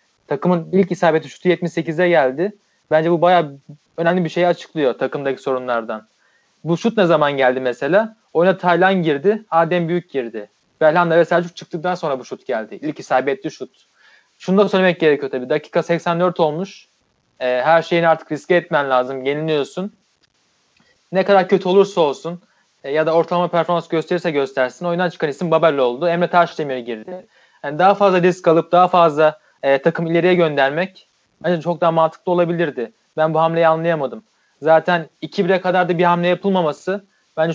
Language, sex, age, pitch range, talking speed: Turkish, male, 30-49, 155-185 Hz, 165 wpm